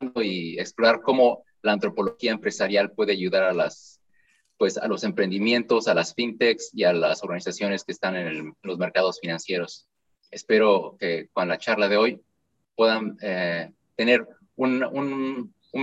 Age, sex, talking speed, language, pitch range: 30-49, male, 155 wpm, Spanish, 105-135 Hz